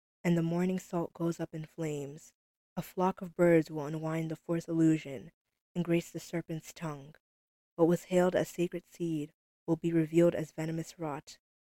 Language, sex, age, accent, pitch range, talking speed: English, female, 20-39, American, 160-180 Hz, 175 wpm